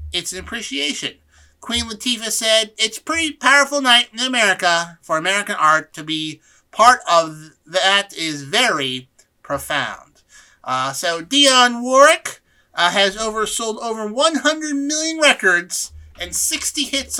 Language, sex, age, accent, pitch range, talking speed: English, male, 30-49, American, 170-235 Hz, 135 wpm